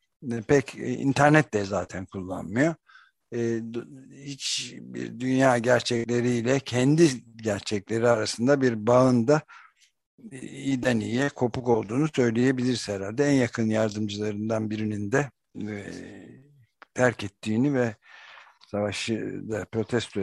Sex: male